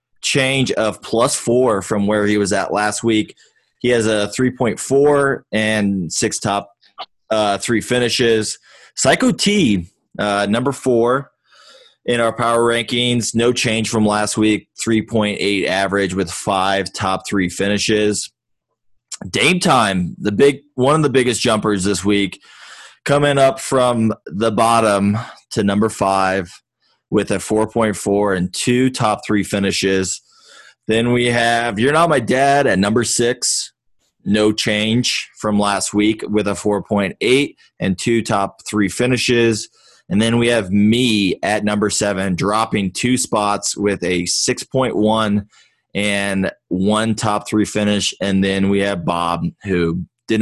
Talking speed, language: 140 wpm, English